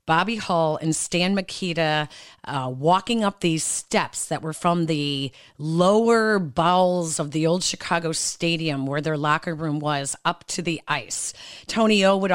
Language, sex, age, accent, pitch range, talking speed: English, female, 30-49, American, 155-190 Hz, 160 wpm